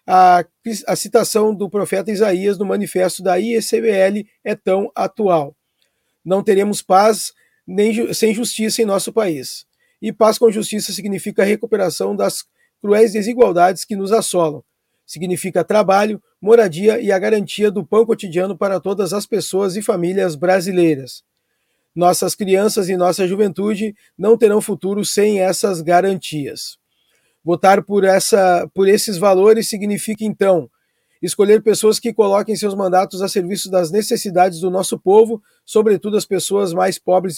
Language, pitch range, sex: Portuguese, 185-215 Hz, male